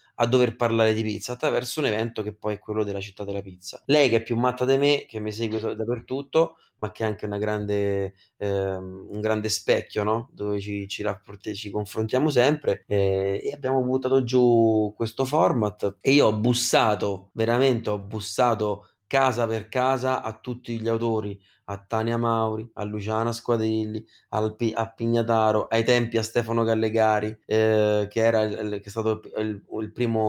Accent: native